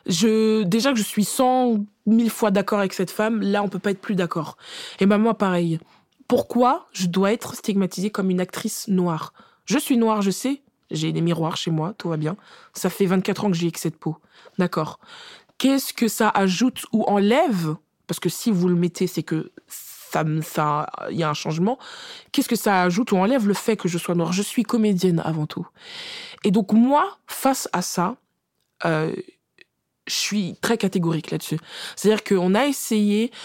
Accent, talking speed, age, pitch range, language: French, 195 wpm, 20-39, 185-250 Hz, French